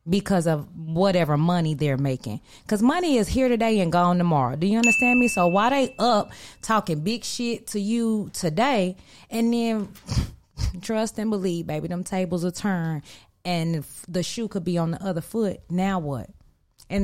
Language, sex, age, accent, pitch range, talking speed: English, female, 20-39, American, 155-210 Hz, 175 wpm